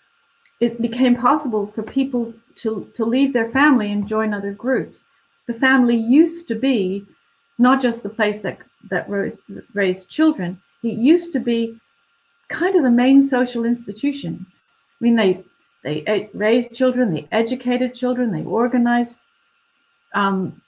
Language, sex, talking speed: English, female, 140 wpm